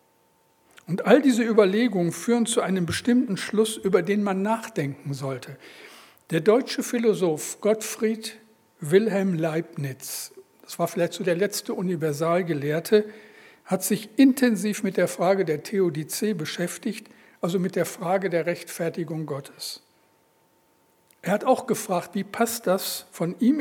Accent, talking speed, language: German, 130 wpm, German